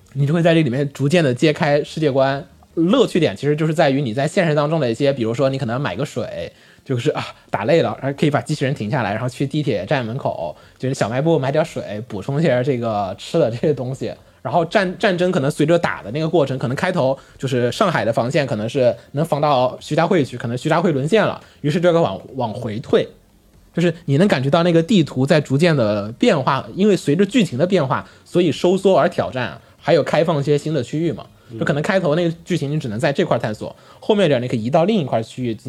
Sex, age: male, 20-39